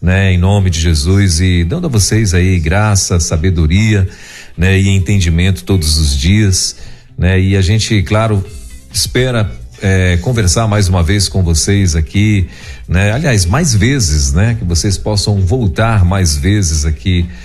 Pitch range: 85-110 Hz